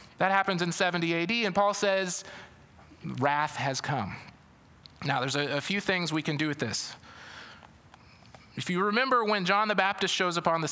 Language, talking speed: English, 185 wpm